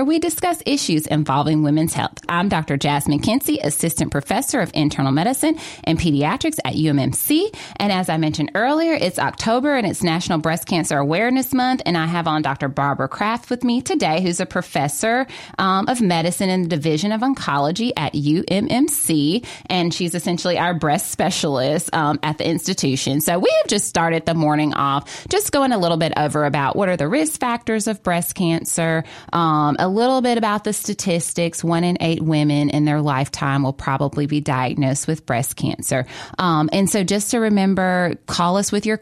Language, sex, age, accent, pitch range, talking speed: English, female, 30-49, American, 150-220 Hz, 185 wpm